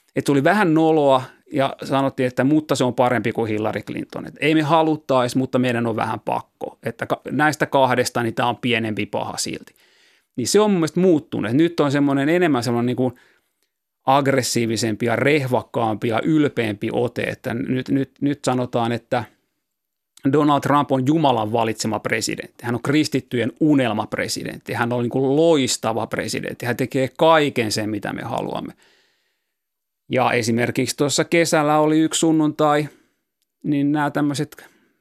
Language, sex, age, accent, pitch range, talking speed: Finnish, male, 30-49, native, 120-150 Hz, 145 wpm